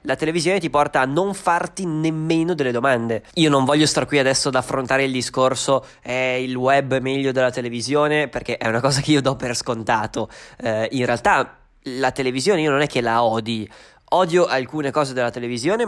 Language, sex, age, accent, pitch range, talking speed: Italian, male, 20-39, native, 120-150 Hz, 195 wpm